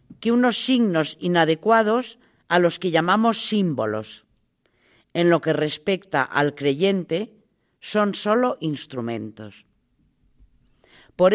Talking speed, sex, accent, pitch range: 100 wpm, female, Spanish, 170-240 Hz